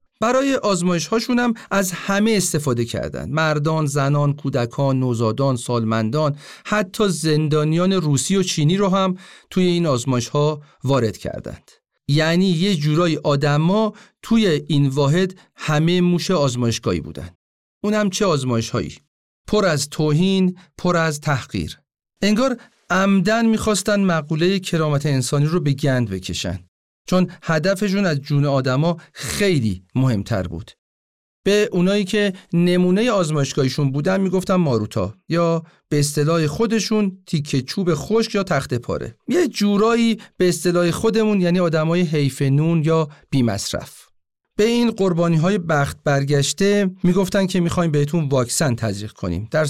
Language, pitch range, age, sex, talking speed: Persian, 140-190 Hz, 40-59, male, 130 wpm